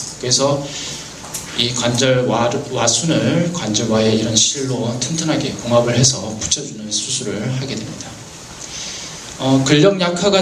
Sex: male